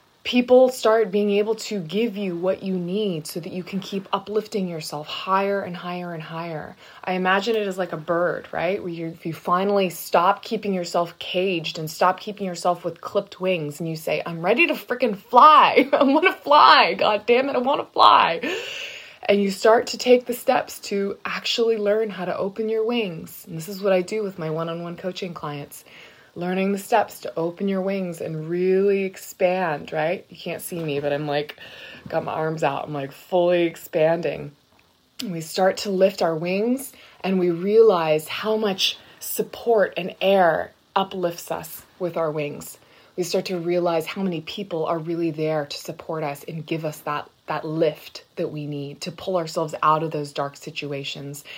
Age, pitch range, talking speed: 20-39, 160-200 Hz, 195 wpm